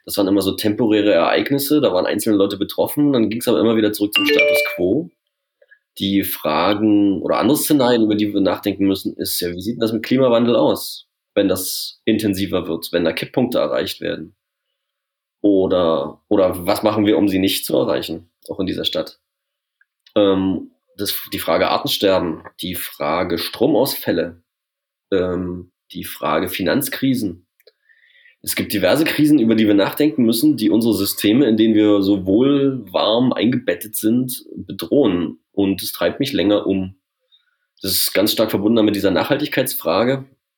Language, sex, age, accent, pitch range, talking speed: German, male, 30-49, German, 100-140 Hz, 160 wpm